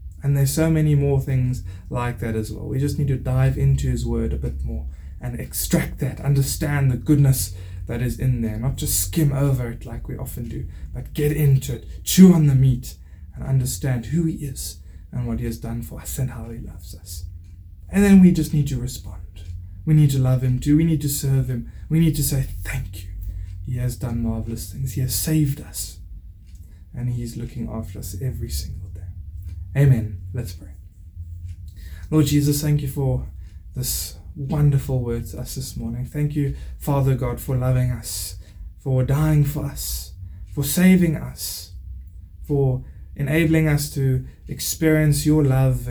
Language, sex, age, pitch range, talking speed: English, male, 20-39, 85-140 Hz, 185 wpm